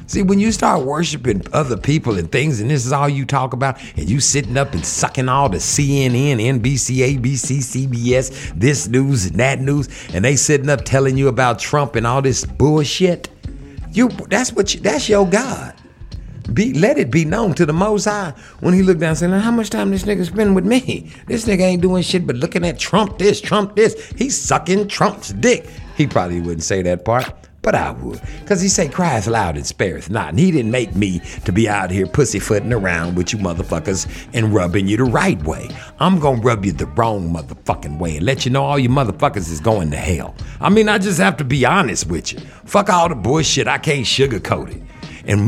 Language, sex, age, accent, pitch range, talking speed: English, male, 60-79, American, 110-185 Hz, 220 wpm